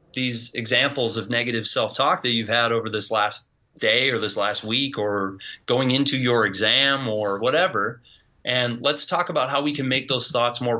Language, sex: English, male